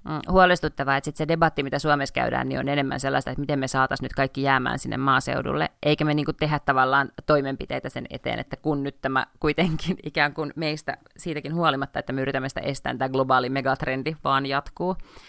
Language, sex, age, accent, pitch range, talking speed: Finnish, female, 30-49, native, 140-170 Hz, 190 wpm